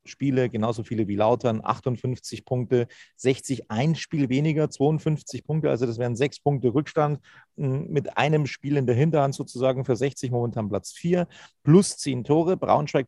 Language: German